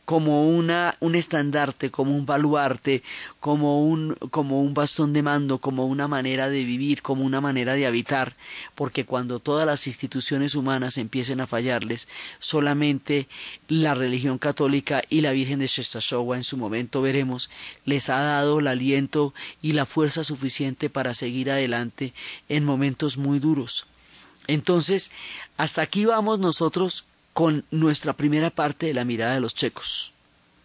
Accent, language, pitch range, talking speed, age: Colombian, Spanish, 130-155 Hz, 145 wpm, 30-49